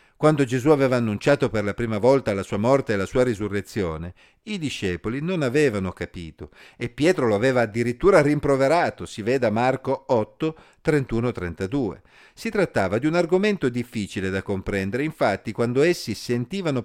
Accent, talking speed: native, 155 wpm